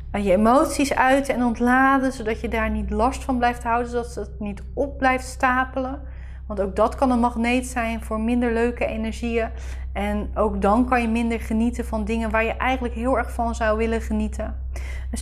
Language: Dutch